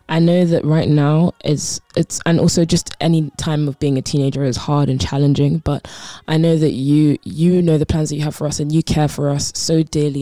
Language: English